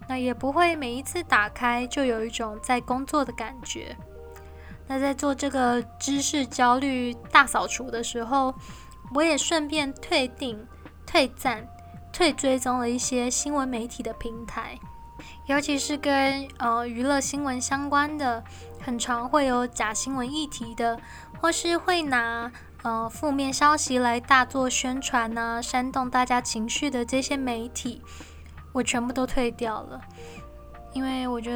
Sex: female